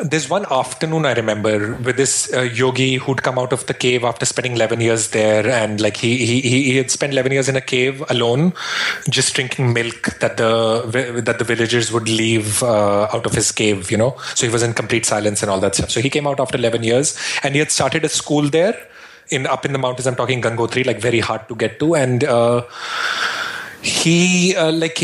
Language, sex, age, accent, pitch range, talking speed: English, male, 30-49, Indian, 115-145 Hz, 225 wpm